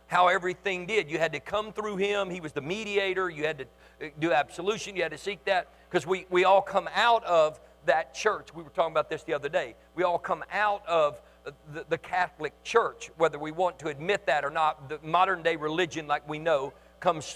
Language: English